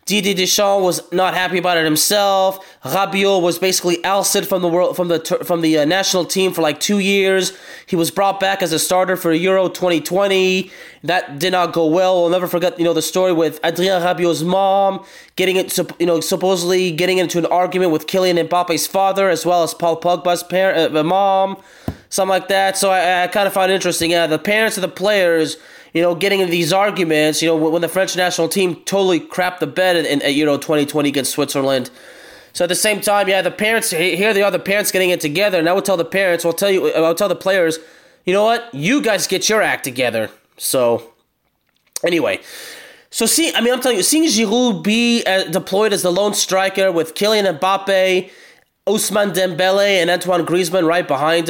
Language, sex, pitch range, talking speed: English, male, 170-195 Hz, 210 wpm